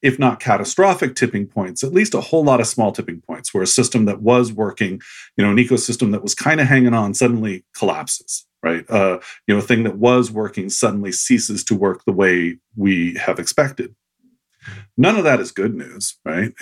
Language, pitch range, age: English, 100-125 Hz, 40-59